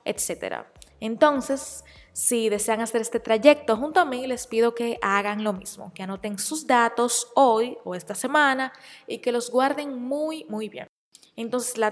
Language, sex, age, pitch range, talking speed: Spanish, female, 20-39, 205-260 Hz, 165 wpm